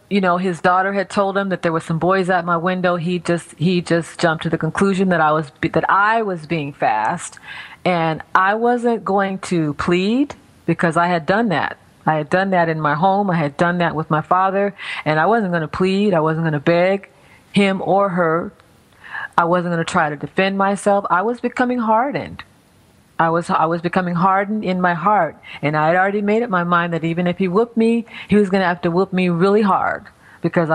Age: 40-59